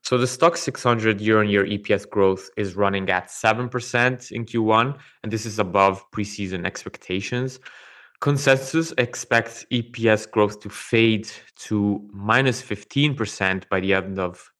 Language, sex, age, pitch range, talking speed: English, male, 20-39, 95-115 Hz, 130 wpm